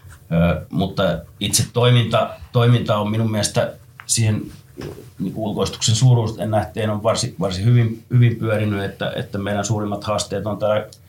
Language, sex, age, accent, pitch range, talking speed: Finnish, male, 30-49, native, 85-115 Hz, 140 wpm